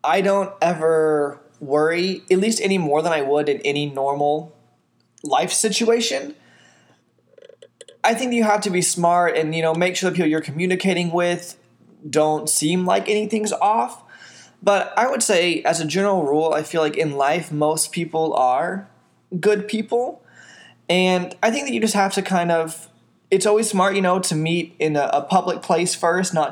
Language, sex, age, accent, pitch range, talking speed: English, male, 20-39, American, 155-190 Hz, 180 wpm